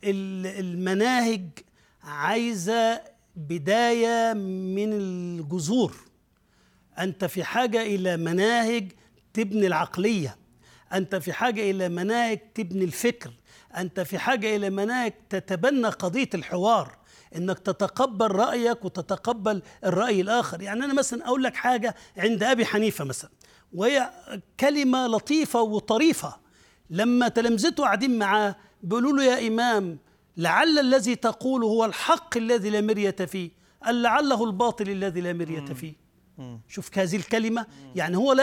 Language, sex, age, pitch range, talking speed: Arabic, male, 50-69, 185-240 Hz, 115 wpm